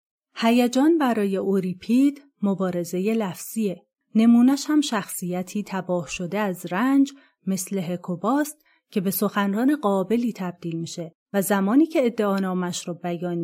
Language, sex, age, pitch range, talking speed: Persian, female, 30-49, 180-235 Hz, 115 wpm